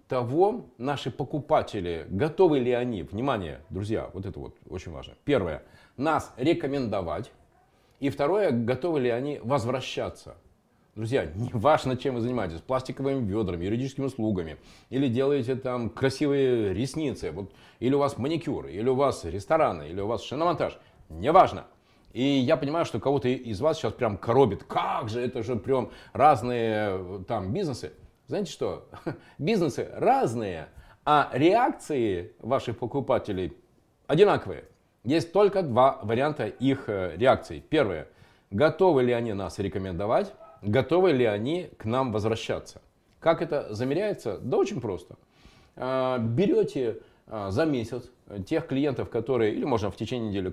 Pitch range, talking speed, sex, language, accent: 105-140 Hz, 135 wpm, male, Russian, native